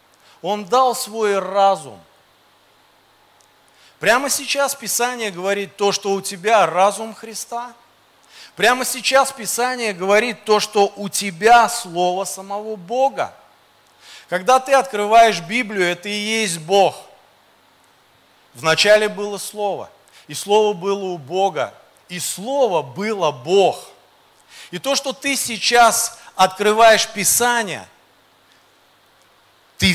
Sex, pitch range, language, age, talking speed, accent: male, 190-230 Hz, Russian, 40-59, 105 wpm, native